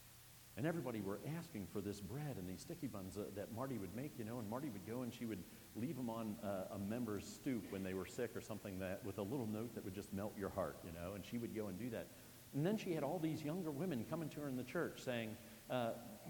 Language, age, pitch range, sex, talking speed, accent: English, 50-69, 110-150 Hz, male, 275 wpm, American